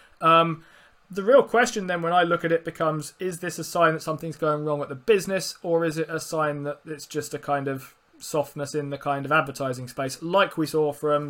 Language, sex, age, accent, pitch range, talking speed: English, male, 20-39, British, 140-165 Hz, 235 wpm